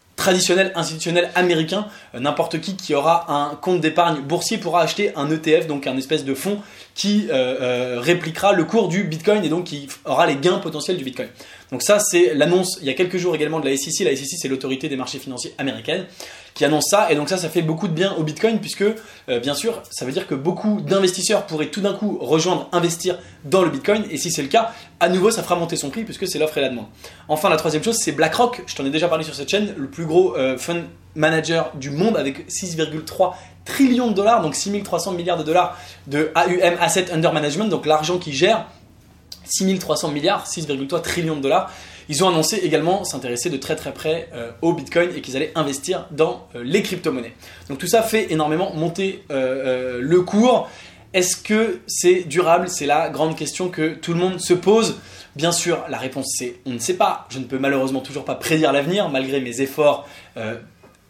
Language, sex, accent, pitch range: English, male, French, 145-185 Hz